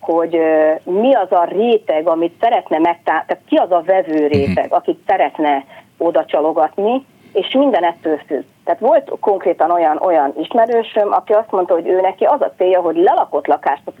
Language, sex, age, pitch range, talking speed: Hungarian, female, 40-59, 170-215 Hz, 175 wpm